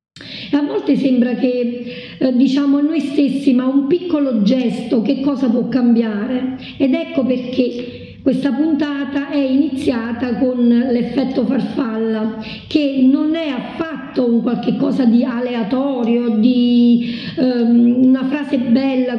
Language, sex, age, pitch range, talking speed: Italian, female, 50-69, 245-290 Hz, 130 wpm